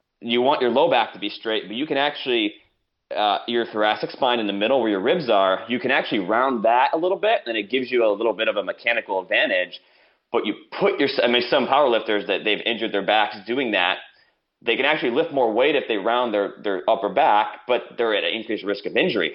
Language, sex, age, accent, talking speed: English, male, 30-49, American, 245 wpm